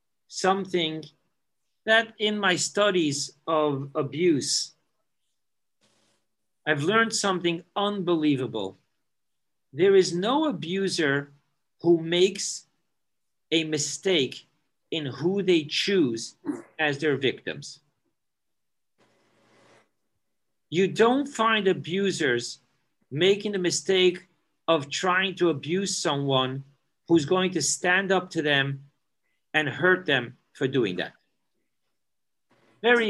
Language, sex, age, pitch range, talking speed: English, male, 50-69, 145-195 Hz, 95 wpm